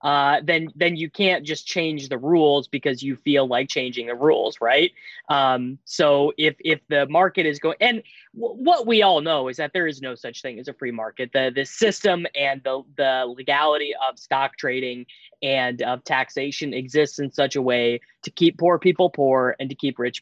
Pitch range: 130-165 Hz